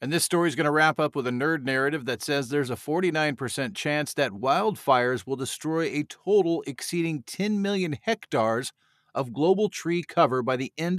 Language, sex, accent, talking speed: English, male, American, 190 wpm